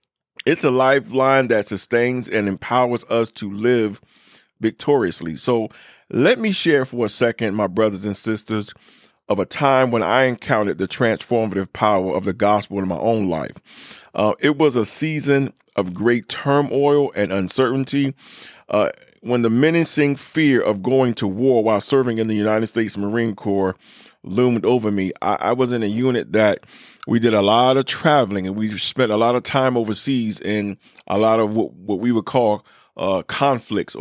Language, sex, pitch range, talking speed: English, male, 105-130 Hz, 175 wpm